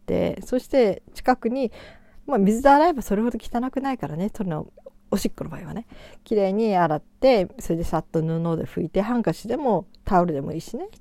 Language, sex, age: Japanese, female, 40-59